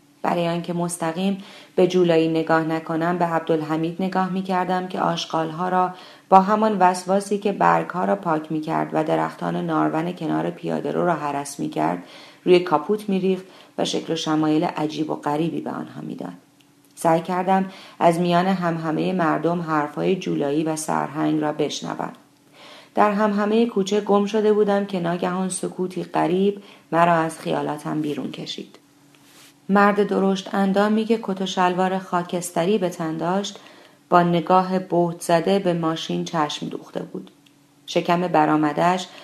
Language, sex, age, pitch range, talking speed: Persian, female, 40-59, 155-185 Hz, 140 wpm